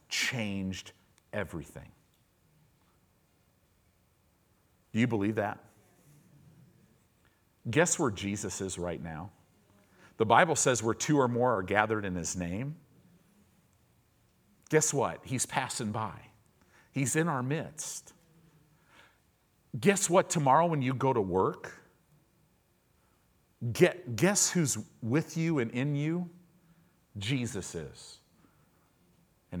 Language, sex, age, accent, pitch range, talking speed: English, male, 50-69, American, 95-145 Hz, 105 wpm